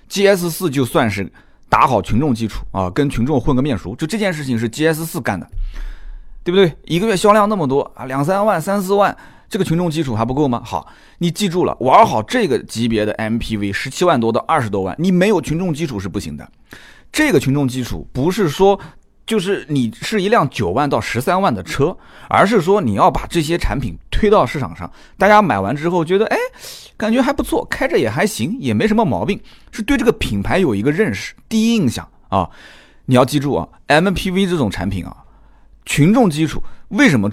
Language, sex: Chinese, male